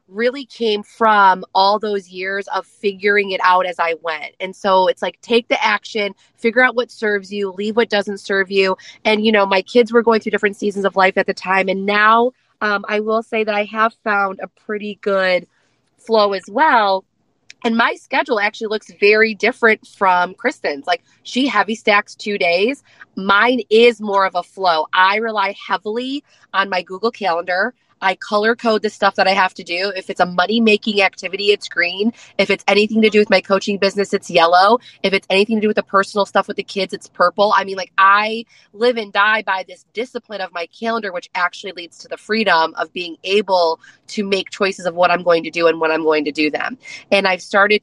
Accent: American